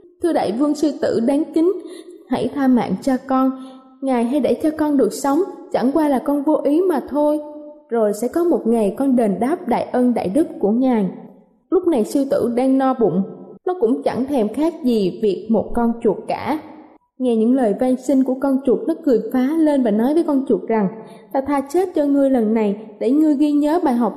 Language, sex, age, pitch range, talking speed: Vietnamese, female, 20-39, 235-305 Hz, 225 wpm